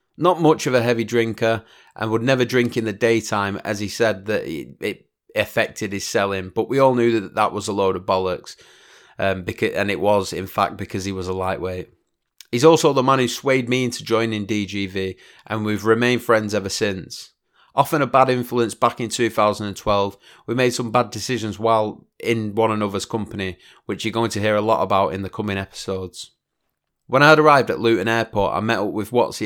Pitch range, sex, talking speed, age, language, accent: 100-120 Hz, male, 205 wpm, 30-49, English, British